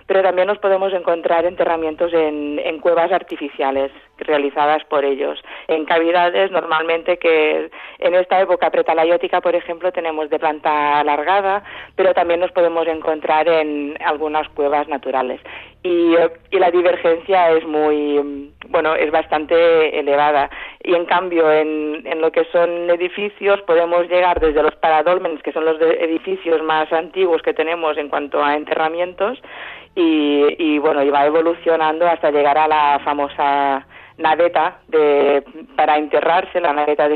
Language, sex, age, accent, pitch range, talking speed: Spanish, female, 40-59, Spanish, 150-175 Hz, 145 wpm